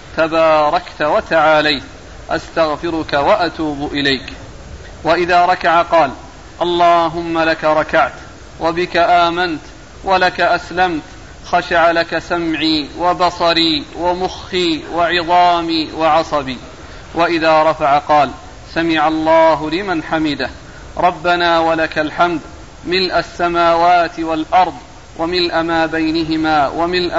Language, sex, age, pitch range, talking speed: Arabic, male, 40-59, 160-175 Hz, 85 wpm